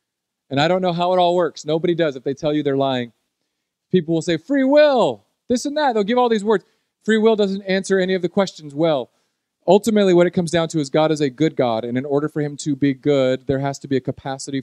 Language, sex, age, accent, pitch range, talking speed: English, male, 40-59, American, 120-145 Hz, 265 wpm